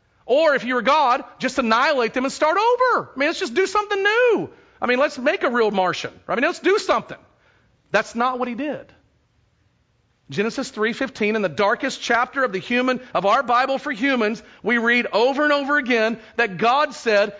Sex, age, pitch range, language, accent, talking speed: male, 40-59, 165-240 Hz, English, American, 205 wpm